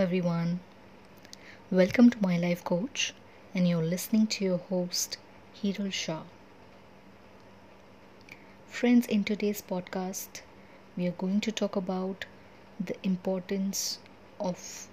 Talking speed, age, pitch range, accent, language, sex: 110 wpm, 20-39, 170-195 Hz, Indian, English, female